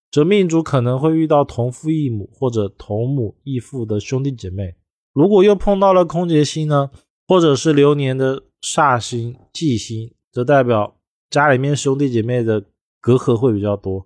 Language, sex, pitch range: Chinese, male, 115-165 Hz